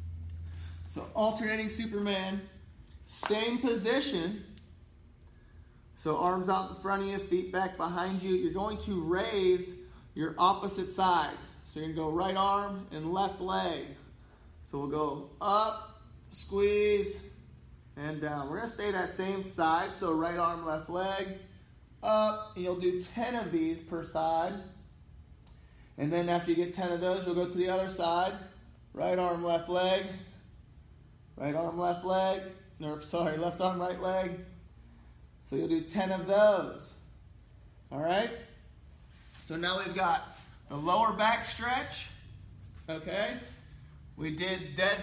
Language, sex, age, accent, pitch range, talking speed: English, male, 20-39, American, 155-195 Hz, 145 wpm